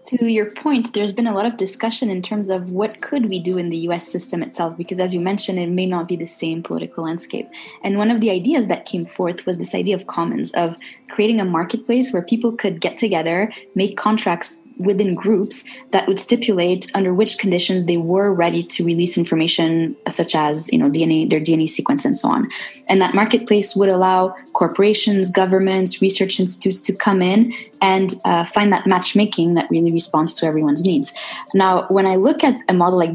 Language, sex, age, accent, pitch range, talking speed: English, female, 20-39, Canadian, 175-215 Hz, 205 wpm